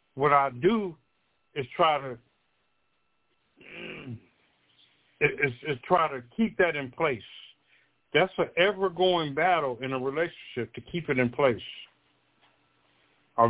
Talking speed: 120 wpm